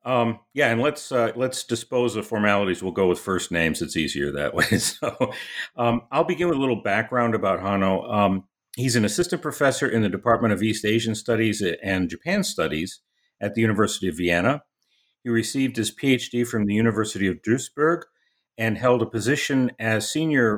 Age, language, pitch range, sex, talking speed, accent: 50-69, English, 95-125 Hz, male, 185 wpm, American